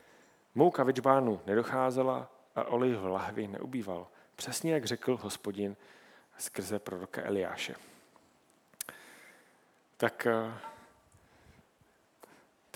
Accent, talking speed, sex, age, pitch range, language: native, 80 wpm, male, 40-59, 110-135 Hz, Czech